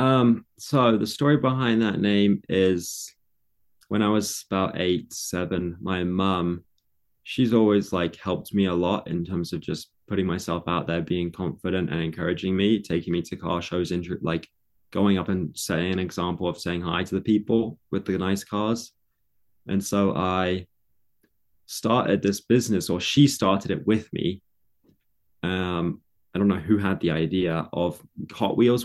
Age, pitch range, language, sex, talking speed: 20-39, 90-105 Hz, English, male, 170 wpm